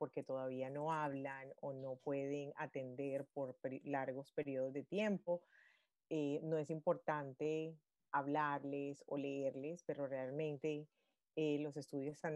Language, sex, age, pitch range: Spanish, female, 30-49, 145-180 Hz